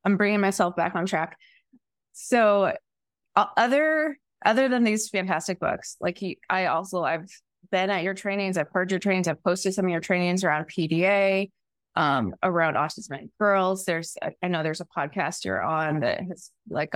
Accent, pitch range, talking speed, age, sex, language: American, 165-200 Hz, 185 wpm, 20-39, female, English